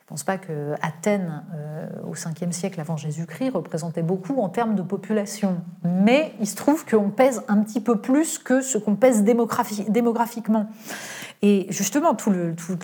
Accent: French